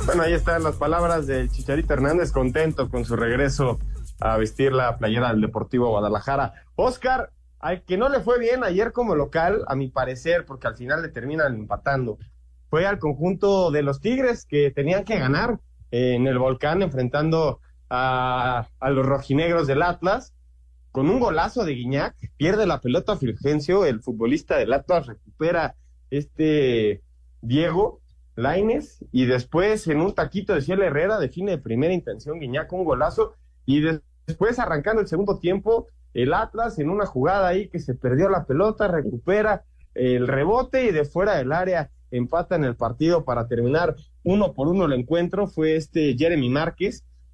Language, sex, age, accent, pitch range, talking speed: Spanish, male, 30-49, Mexican, 120-175 Hz, 165 wpm